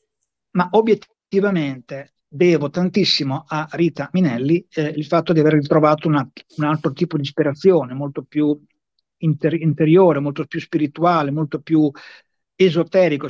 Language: Italian